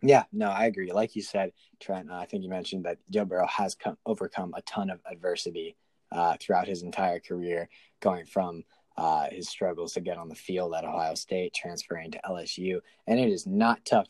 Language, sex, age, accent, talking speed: English, male, 20-39, American, 205 wpm